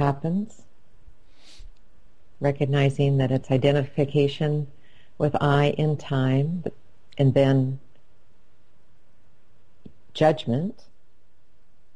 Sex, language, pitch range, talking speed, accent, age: female, English, 125-150 Hz, 60 wpm, American, 50-69